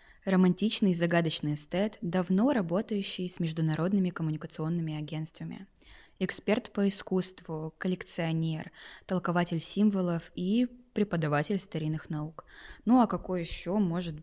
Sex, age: female, 20-39